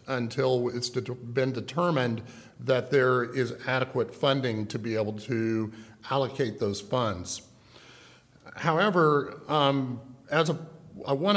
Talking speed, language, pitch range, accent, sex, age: 120 wpm, English, 125-140 Hz, American, male, 50-69